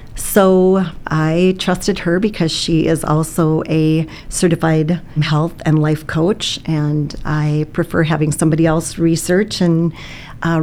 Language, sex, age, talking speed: English, female, 40-59, 130 wpm